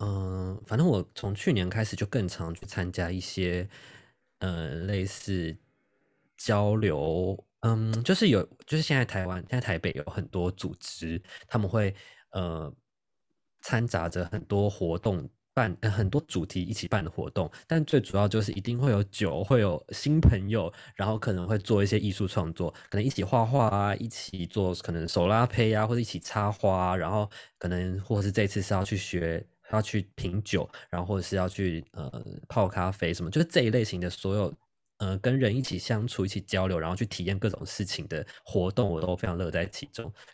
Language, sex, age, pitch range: Chinese, male, 20-39, 90-115 Hz